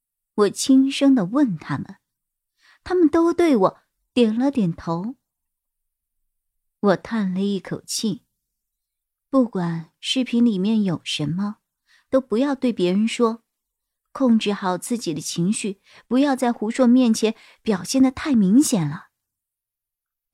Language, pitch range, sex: Chinese, 185-260 Hz, male